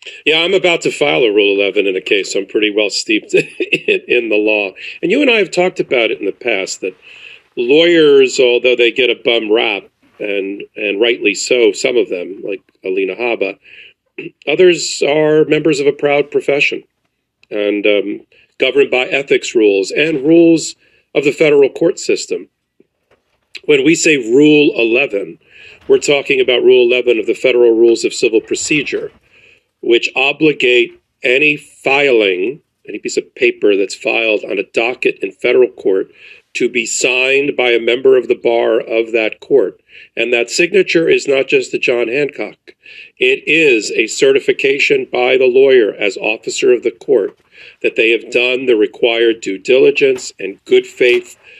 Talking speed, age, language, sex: 165 wpm, 40-59, English, male